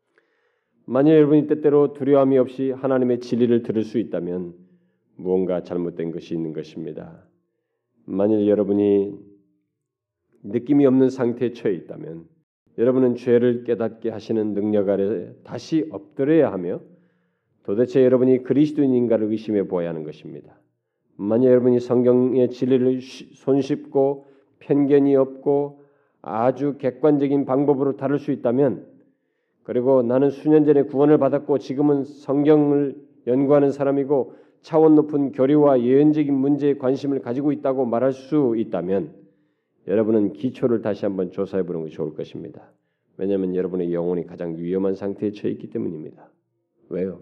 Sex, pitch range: male, 105-145 Hz